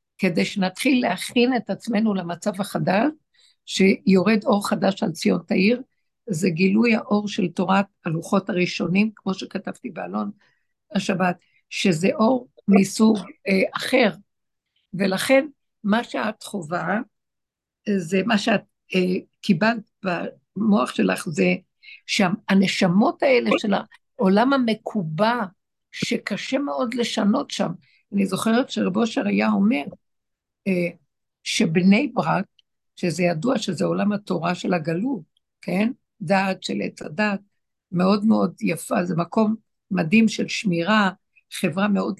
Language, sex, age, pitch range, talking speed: Hebrew, female, 60-79, 190-230 Hz, 110 wpm